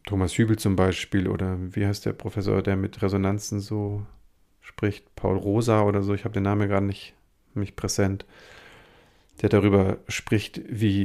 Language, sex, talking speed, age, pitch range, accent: German, male, 165 wpm, 50-69, 95-105 Hz, German